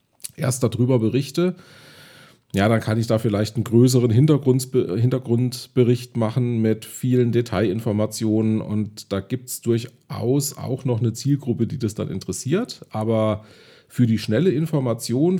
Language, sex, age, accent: German, male, 40-59, German